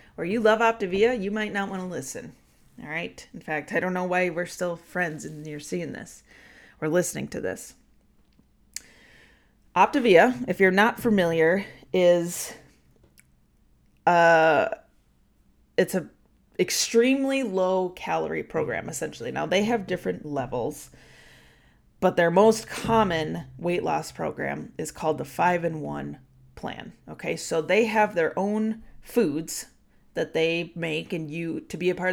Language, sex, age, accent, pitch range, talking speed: English, female, 30-49, American, 160-220 Hz, 140 wpm